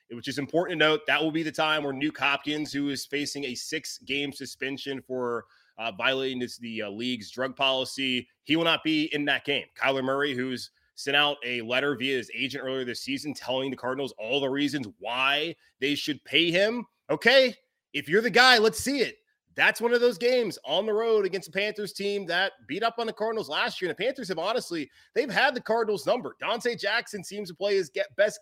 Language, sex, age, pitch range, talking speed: English, male, 20-39, 145-205 Hz, 220 wpm